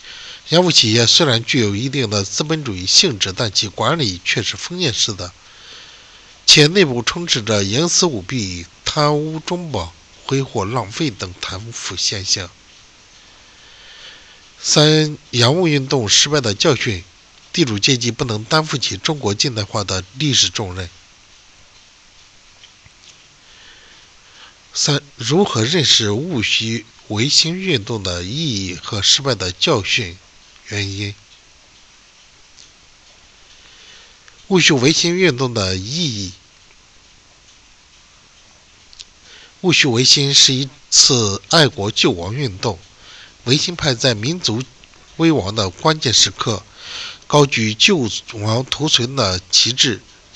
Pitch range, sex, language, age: 100-150 Hz, male, Chinese, 60-79